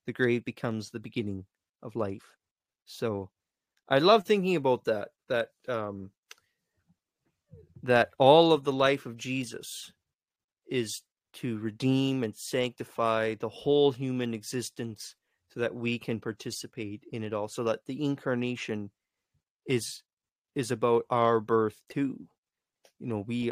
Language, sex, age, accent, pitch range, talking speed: English, male, 30-49, American, 115-140 Hz, 135 wpm